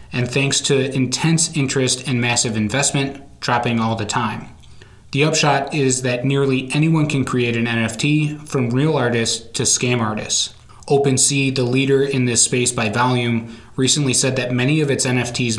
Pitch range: 120-140 Hz